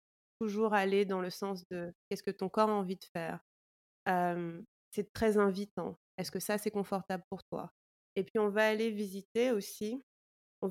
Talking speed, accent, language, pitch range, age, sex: 185 wpm, French, French, 185-215 Hz, 30-49, female